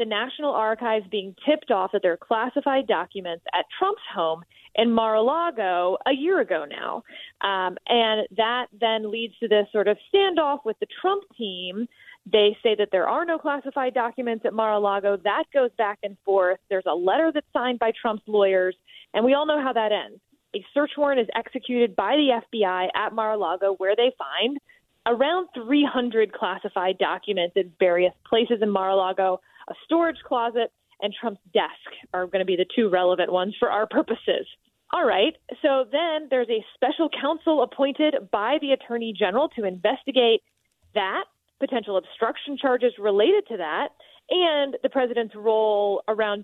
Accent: American